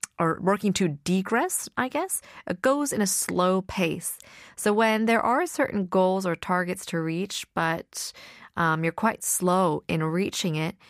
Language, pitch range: Korean, 175-230 Hz